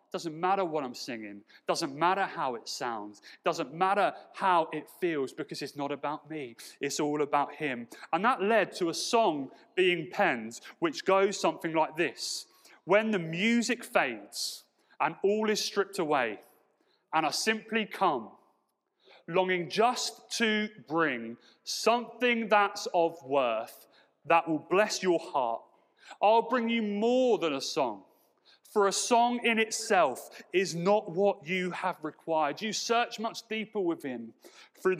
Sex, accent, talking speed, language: male, British, 150 wpm, English